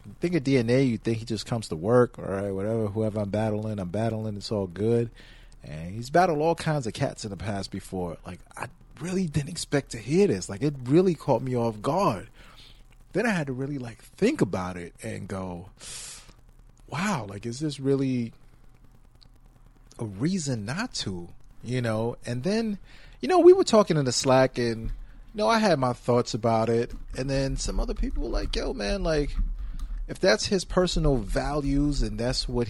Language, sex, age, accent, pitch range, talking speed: English, male, 30-49, American, 110-145 Hz, 195 wpm